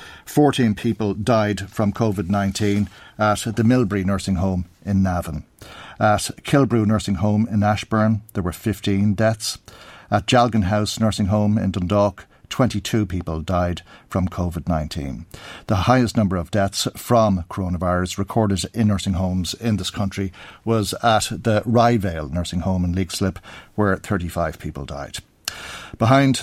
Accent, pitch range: Irish, 95-115 Hz